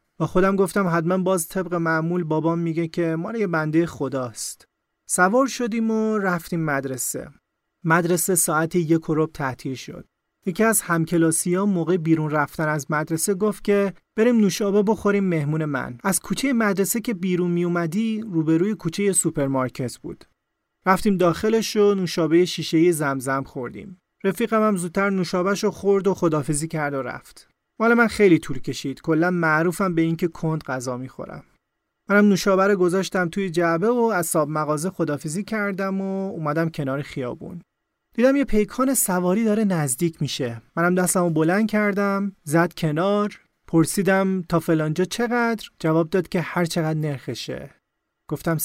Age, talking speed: 30-49, 145 wpm